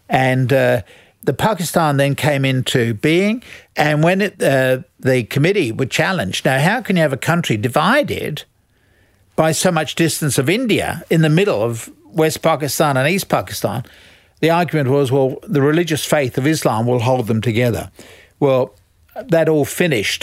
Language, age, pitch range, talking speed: English, 60-79, 120-160 Hz, 165 wpm